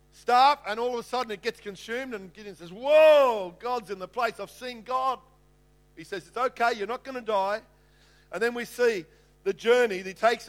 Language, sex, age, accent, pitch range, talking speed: English, male, 50-69, Australian, 220-270 Hz, 210 wpm